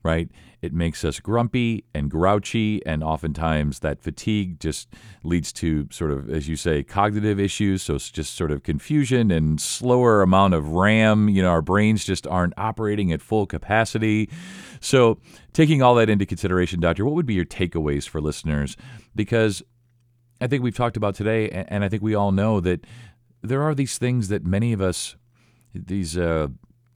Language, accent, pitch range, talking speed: English, American, 85-115 Hz, 180 wpm